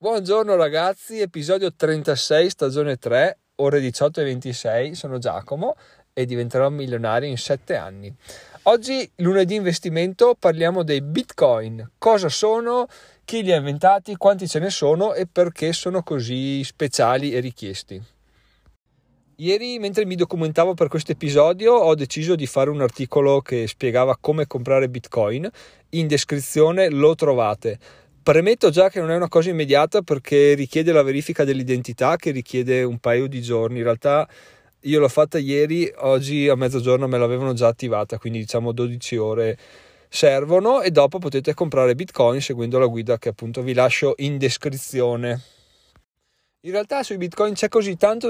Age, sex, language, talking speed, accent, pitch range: 40-59, male, Italian, 150 wpm, native, 130-180 Hz